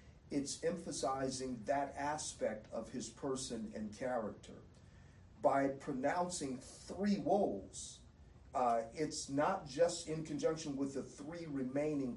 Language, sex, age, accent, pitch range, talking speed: English, male, 40-59, American, 120-150 Hz, 110 wpm